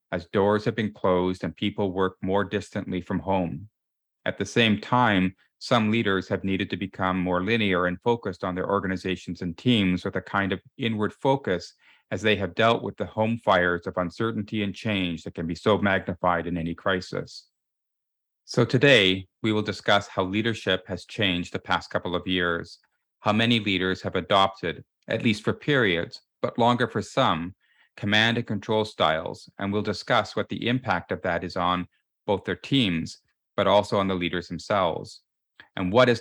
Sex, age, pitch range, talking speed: male, 30-49, 90-105 Hz, 180 wpm